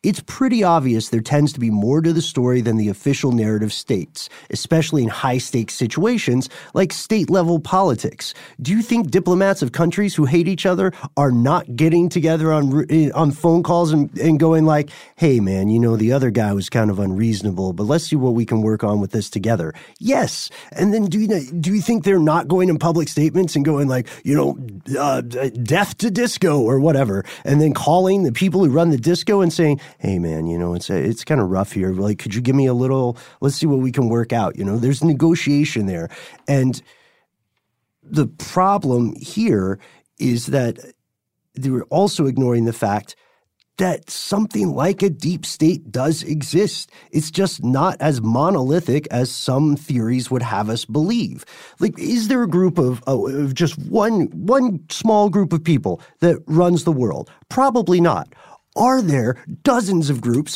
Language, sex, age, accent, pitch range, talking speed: English, male, 30-49, American, 125-180 Hz, 190 wpm